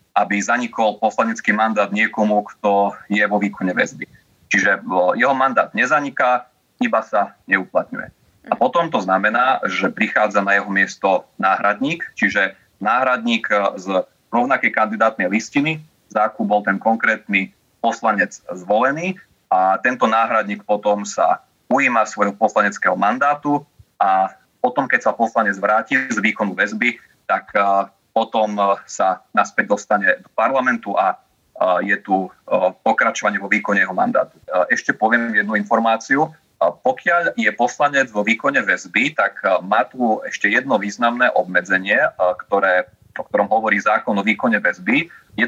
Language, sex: Slovak, male